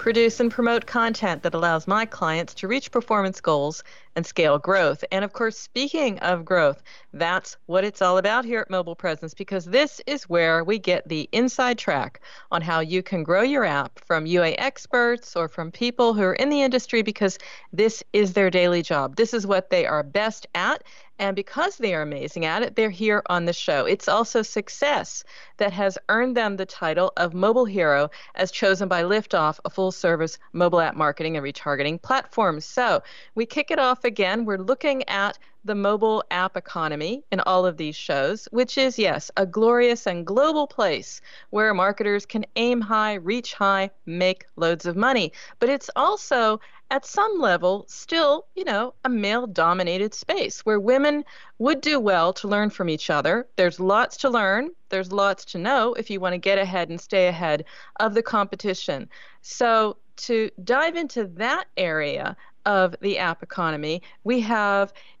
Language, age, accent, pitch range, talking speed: English, 40-59, American, 180-240 Hz, 180 wpm